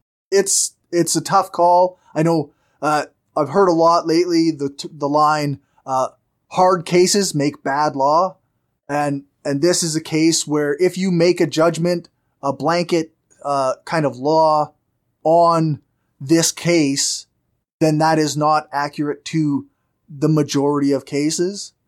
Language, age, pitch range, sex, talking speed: English, 20-39, 135-165 Hz, male, 145 wpm